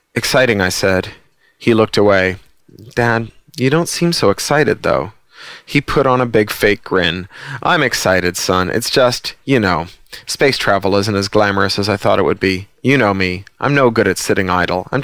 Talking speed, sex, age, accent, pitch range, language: 190 wpm, male, 30-49, American, 100-125 Hz, English